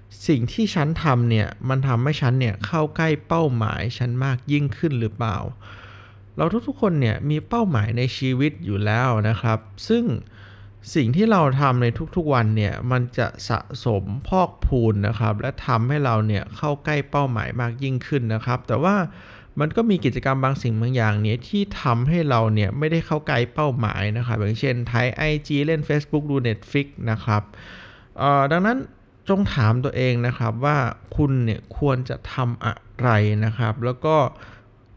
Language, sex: Thai, male